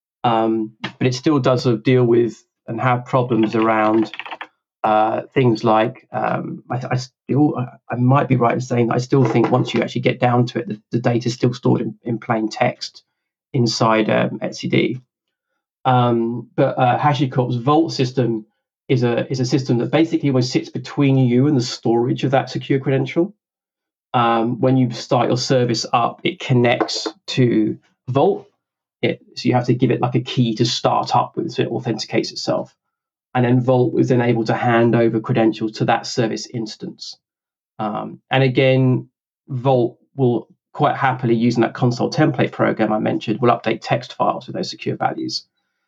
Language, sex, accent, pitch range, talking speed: English, male, British, 115-130 Hz, 180 wpm